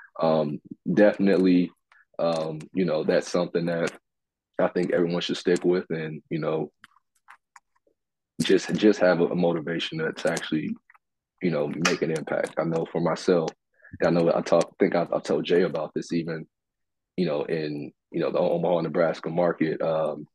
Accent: American